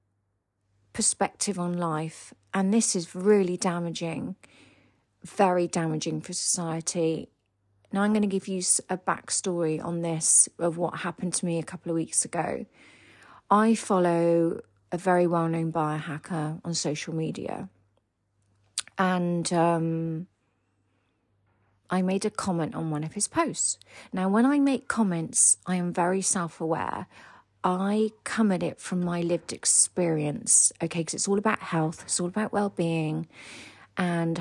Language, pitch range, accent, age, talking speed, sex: English, 150-185 Hz, British, 40-59, 145 wpm, female